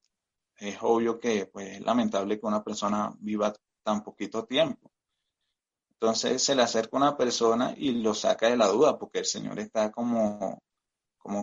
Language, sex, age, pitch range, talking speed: Spanish, male, 30-49, 110-130 Hz, 165 wpm